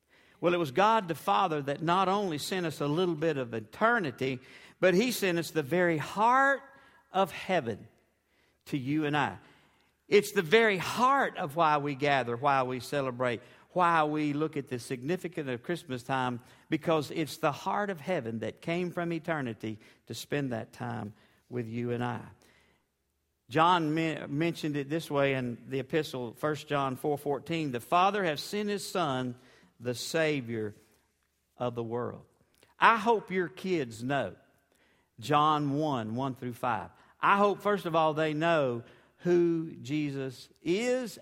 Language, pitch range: English, 125-175 Hz